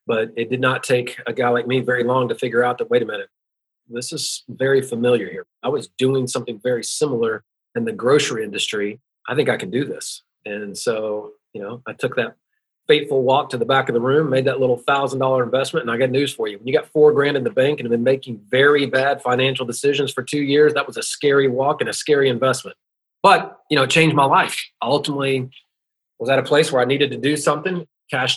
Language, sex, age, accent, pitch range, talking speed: English, male, 40-59, American, 120-145 Hz, 240 wpm